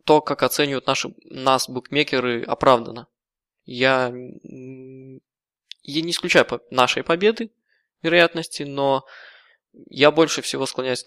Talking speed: 105 wpm